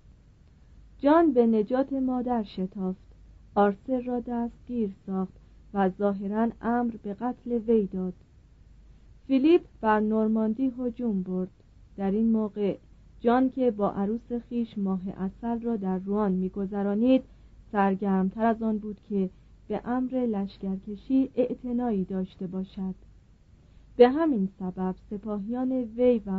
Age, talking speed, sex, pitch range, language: 40-59, 120 wpm, female, 195-250 Hz, Persian